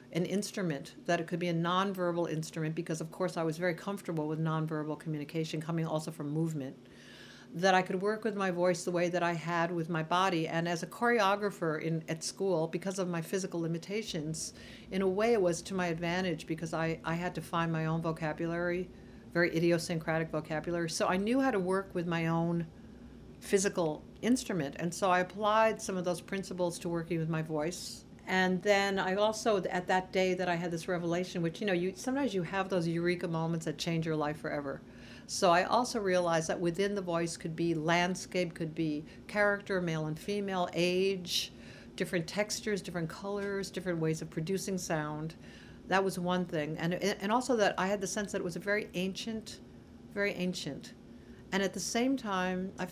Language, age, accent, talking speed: English, 60-79, American, 195 wpm